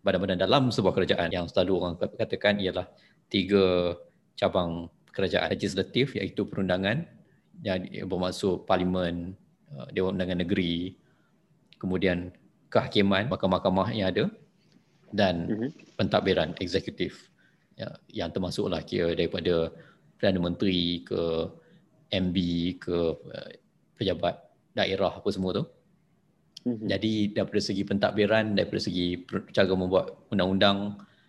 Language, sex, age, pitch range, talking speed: Malay, male, 20-39, 90-110 Hz, 100 wpm